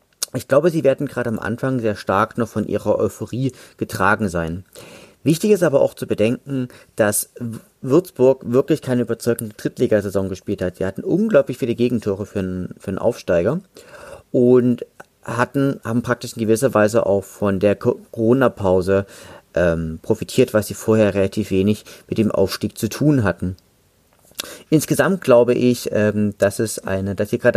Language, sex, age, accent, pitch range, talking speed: German, male, 40-59, German, 105-130 Hz, 150 wpm